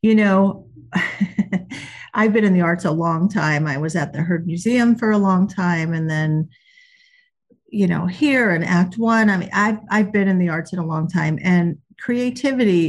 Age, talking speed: 50-69, 195 wpm